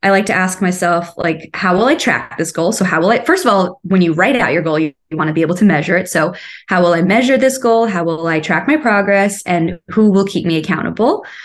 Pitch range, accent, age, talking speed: 175-215 Hz, American, 20-39, 275 wpm